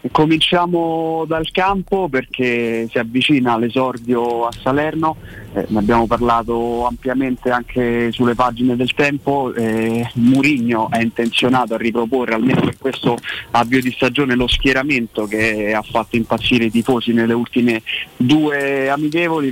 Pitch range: 115-130 Hz